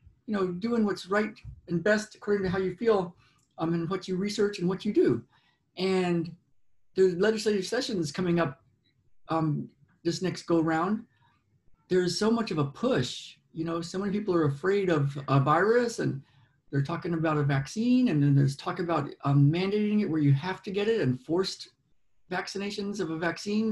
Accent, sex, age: American, male, 50-69